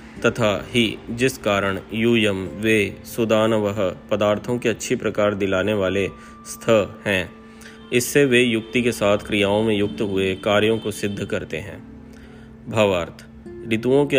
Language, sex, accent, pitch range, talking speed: Hindi, male, native, 100-115 Hz, 85 wpm